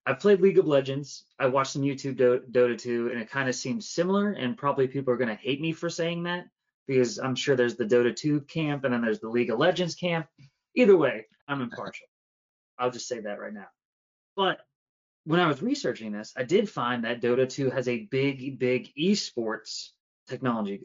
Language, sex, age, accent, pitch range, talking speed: English, male, 20-39, American, 125-165 Hz, 210 wpm